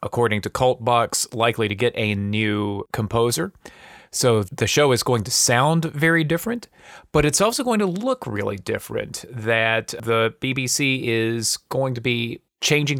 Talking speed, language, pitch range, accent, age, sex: 160 wpm, English, 110-140 Hz, American, 30-49, male